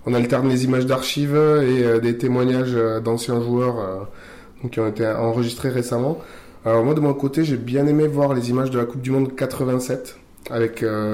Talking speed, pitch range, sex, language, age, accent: 180 wpm, 110-135 Hz, male, French, 20-39, French